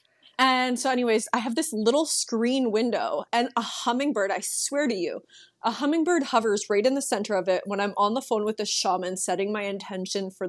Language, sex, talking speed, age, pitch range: English, female, 210 wpm, 20-39, 205-245 Hz